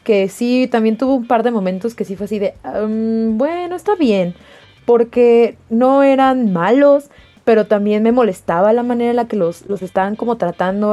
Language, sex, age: Spanish, female, 20-39